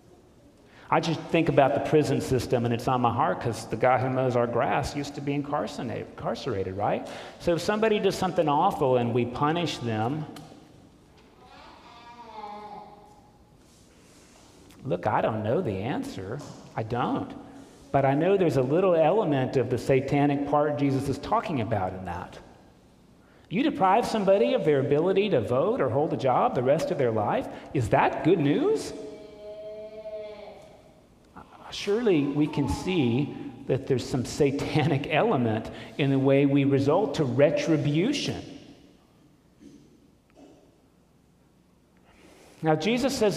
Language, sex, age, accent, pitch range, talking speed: English, male, 40-59, American, 130-175 Hz, 135 wpm